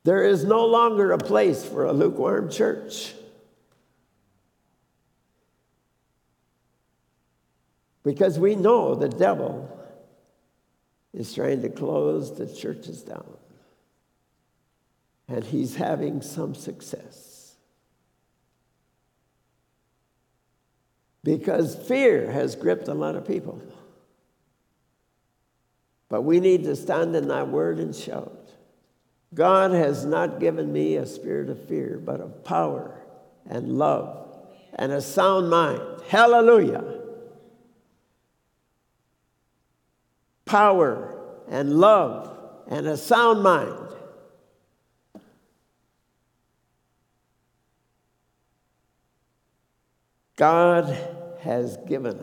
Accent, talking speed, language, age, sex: American, 85 wpm, English, 60-79, male